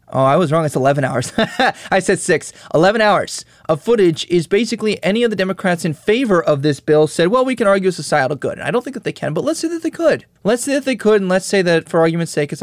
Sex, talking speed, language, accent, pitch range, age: male, 280 wpm, English, American, 145-195 Hz, 20-39